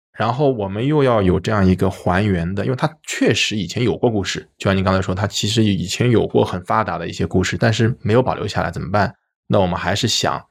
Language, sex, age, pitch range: Chinese, male, 20-39, 95-115 Hz